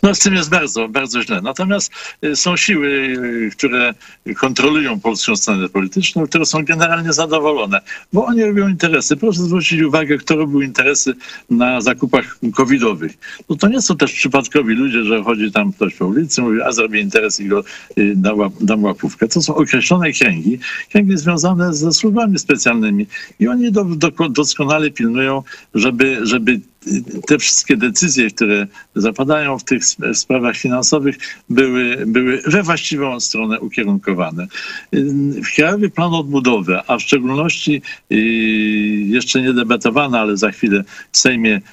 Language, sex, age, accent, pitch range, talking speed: Polish, male, 60-79, native, 120-170 Hz, 145 wpm